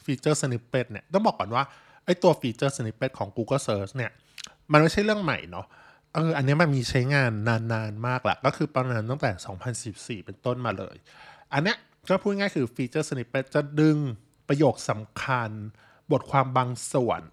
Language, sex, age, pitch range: Thai, male, 20-39, 110-150 Hz